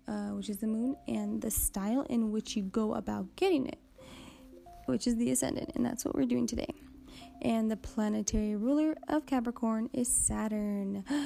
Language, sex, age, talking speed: English, female, 20-39, 170 wpm